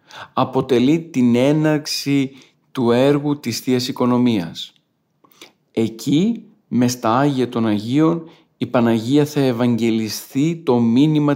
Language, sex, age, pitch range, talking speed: Greek, male, 40-59, 120-145 Hz, 105 wpm